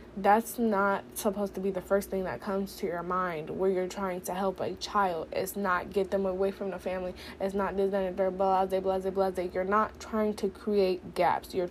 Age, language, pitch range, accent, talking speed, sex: 20-39, English, 195-215 Hz, American, 230 wpm, female